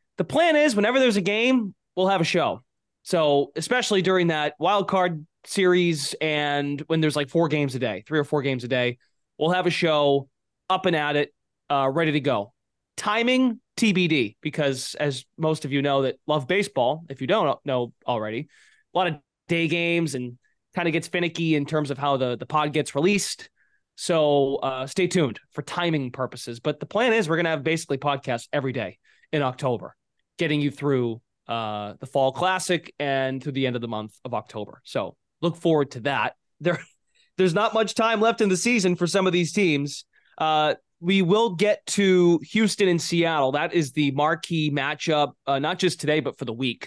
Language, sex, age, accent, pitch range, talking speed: English, male, 20-39, American, 140-185 Hz, 200 wpm